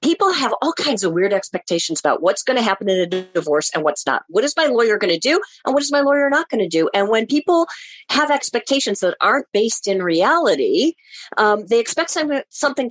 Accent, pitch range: American, 185-260 Hz